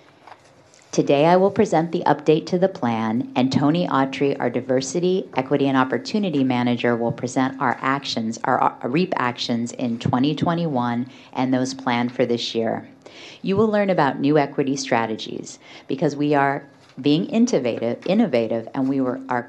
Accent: American